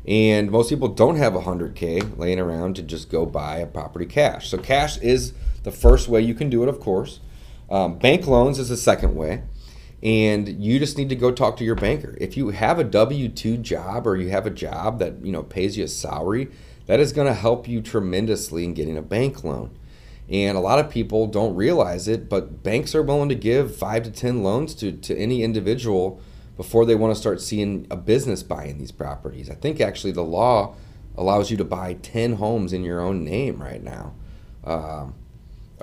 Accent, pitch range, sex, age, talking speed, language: American, 85-115 Hz, male, 30-49, 210 wpm, English